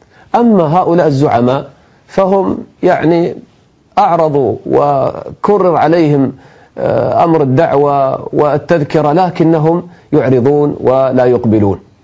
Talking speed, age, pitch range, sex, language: 75 wpm, 40-59, 120-155 Hz, male, English